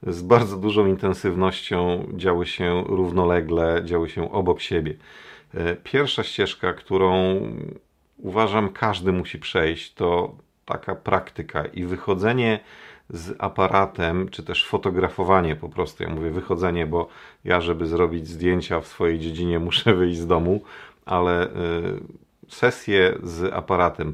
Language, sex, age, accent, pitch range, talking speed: Polish, male, 40-59, native, 85-95 Hz, 120 wpm